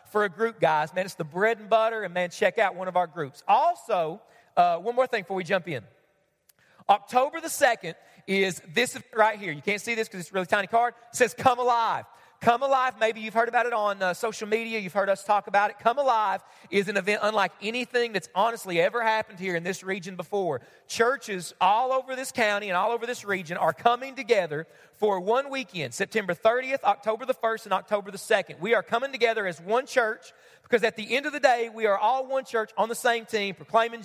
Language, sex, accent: English, male, American